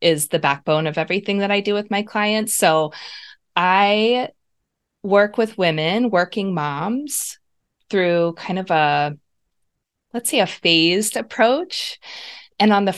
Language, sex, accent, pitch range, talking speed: English, female, American, 160-215 Hz, 140 wpm